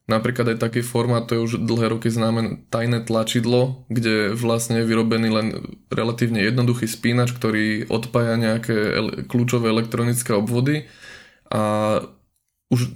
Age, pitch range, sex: 20-39, 110-120 Hz, male